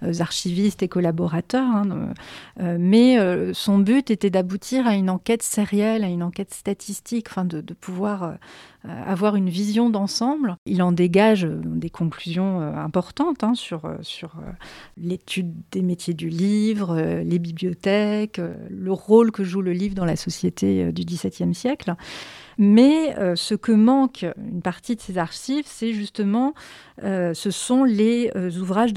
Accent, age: French, 40-59